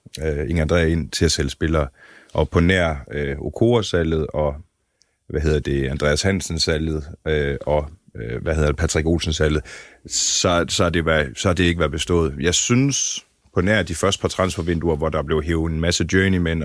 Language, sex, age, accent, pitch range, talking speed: Danish, male, 30-49, native, 80-100 Hz, 175 wpm